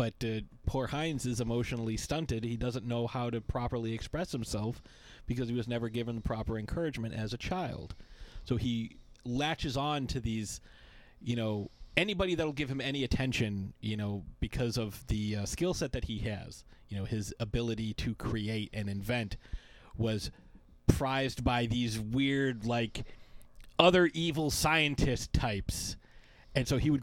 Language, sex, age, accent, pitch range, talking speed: English, male, 30-49, American, 110-140 Hz, 160 wpm